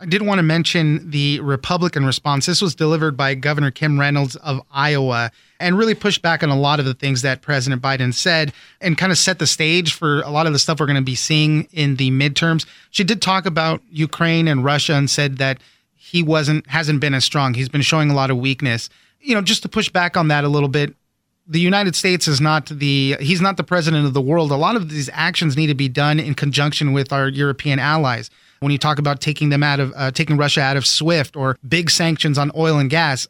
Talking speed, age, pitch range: 240 wpm, 30-49, 140-170 Hz